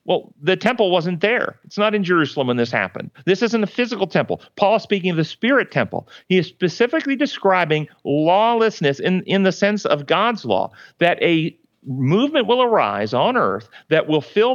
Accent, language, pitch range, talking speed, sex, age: American, English, 150-200 Hz, 190 wpm, male, 50-69